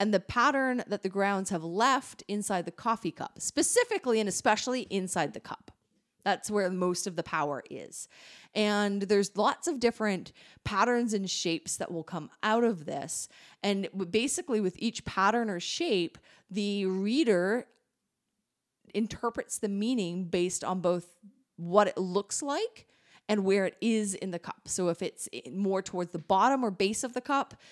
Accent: American